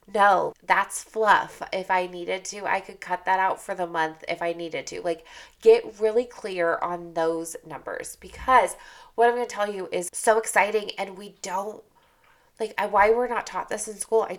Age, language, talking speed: 20-39, English, 195 wpm